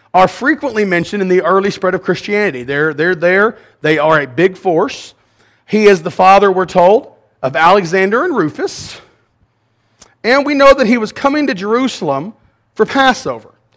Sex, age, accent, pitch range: male, 40-59, American, 180-240 Hz